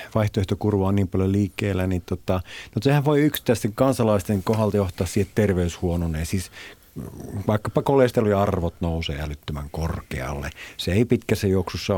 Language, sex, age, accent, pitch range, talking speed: Finnish, male, 50-69, native, 85-110 Hz, 135 wpm